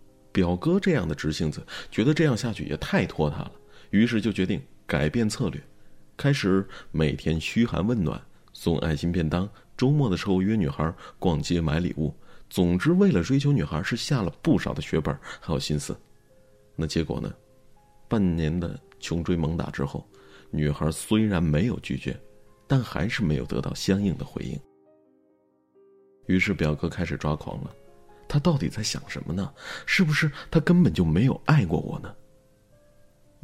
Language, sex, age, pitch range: Chinese, male, 30-49, 80-125 Hz